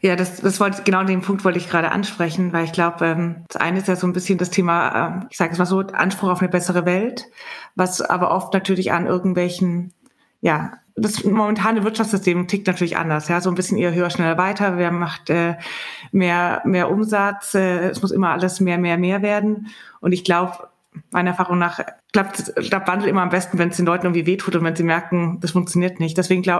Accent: German